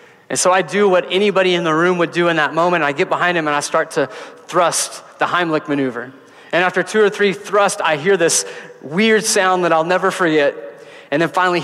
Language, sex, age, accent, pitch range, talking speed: English, male, 30-49, American, 150-185 Hz, 225 wpm